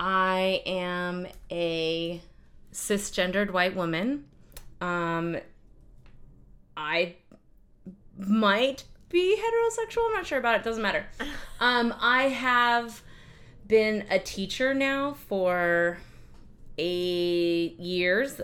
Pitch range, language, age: 160-205 Hz, English, 20-39